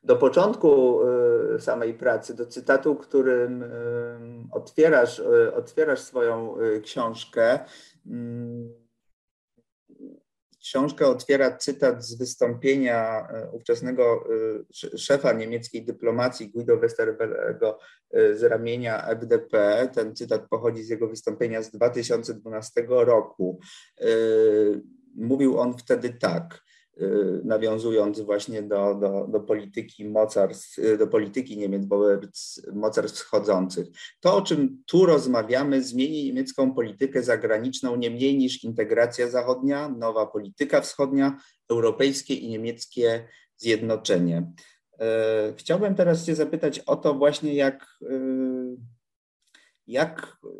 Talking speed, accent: 100 wpm, native